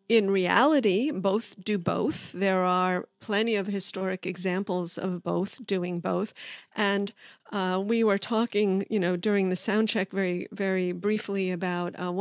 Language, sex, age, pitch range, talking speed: English, female, 50-69, 190-225 Hz, 150 wpm